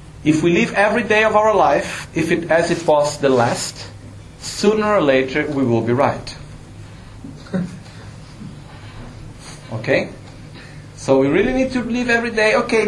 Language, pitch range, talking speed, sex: Italian, 125-170 Hz, 155 wpm, male